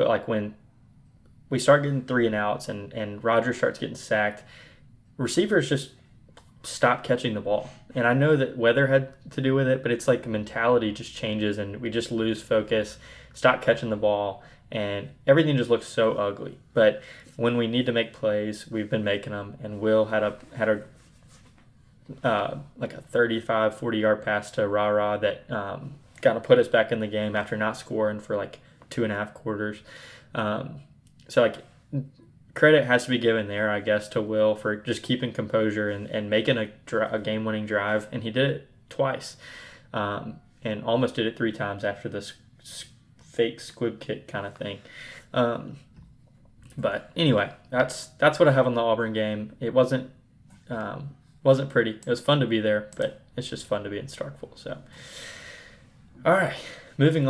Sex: male